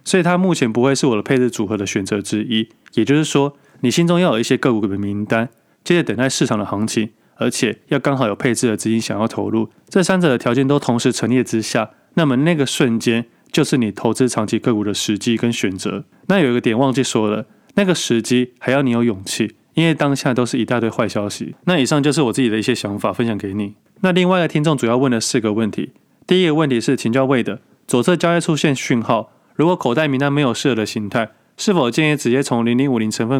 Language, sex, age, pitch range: Chinese, male, 20-39, 110-140 Hz